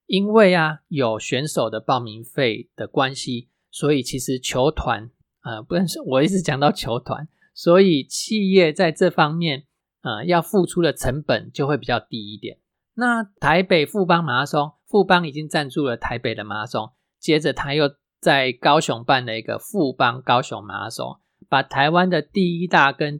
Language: Chinese